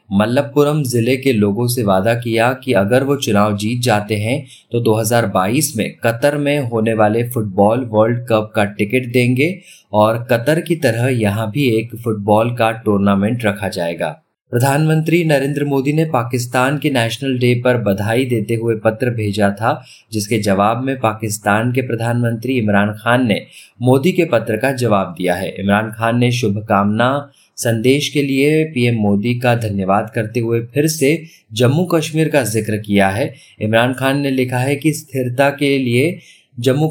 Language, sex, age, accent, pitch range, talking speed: Hindi, male, 30-49, native, 110-140 Hz, 135 wpm